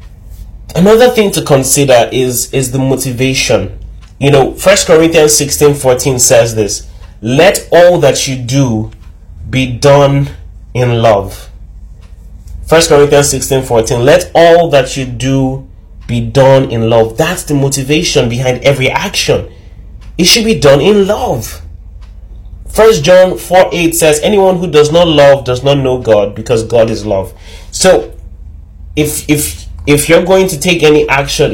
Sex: male